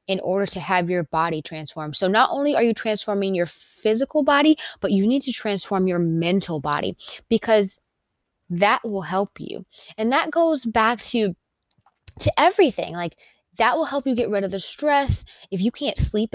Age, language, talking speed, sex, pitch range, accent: 20-39, English, 185 wpm, female, 185-245 Hz, American